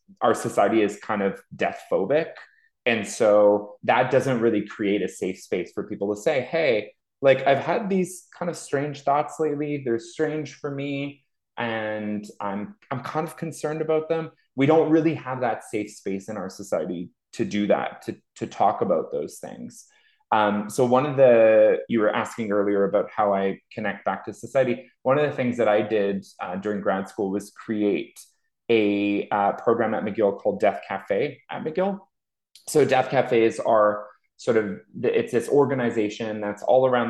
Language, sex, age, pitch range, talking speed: English, male, 20-39, 105-140 Hz, 180 wpm